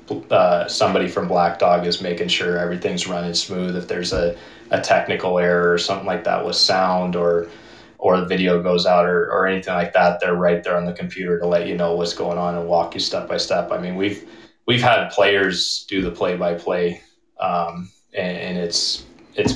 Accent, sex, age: American, male, 20-39